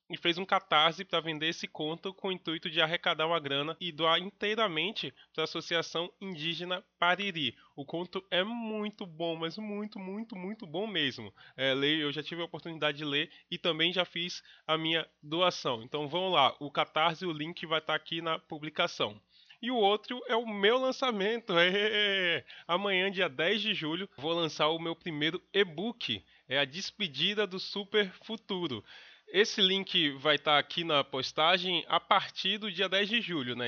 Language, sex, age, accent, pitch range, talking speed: Portuguese, male, 20-39, Brazilian, 150-190 Hz, 180 wpm